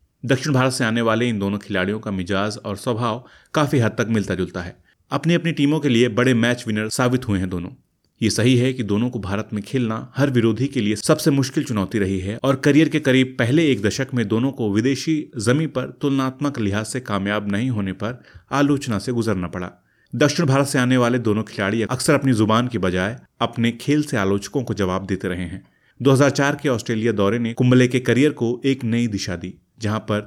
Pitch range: 105-135 Hz